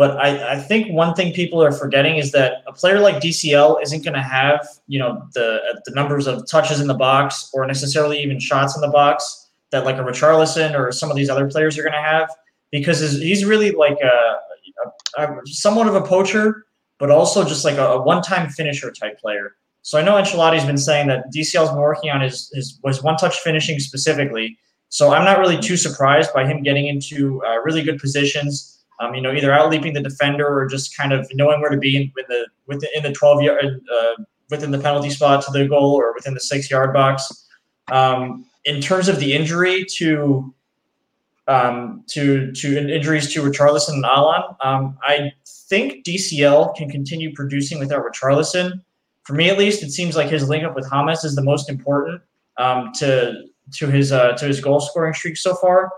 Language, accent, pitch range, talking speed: English, American, 140-160 Hz, 205 wpm